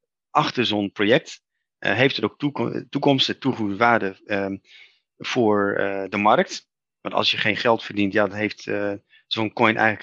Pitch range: 105-125 Hz